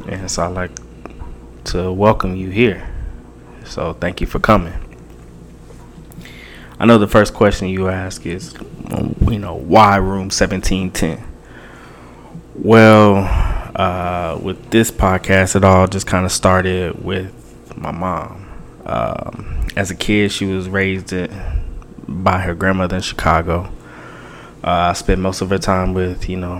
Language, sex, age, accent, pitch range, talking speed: English, male, 20-39, American, 90-95 Hz, 140 wpm